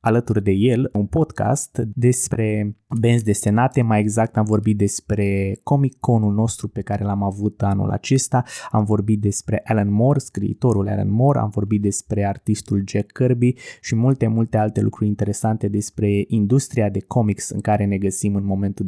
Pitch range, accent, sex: 105-125 Hz, native, male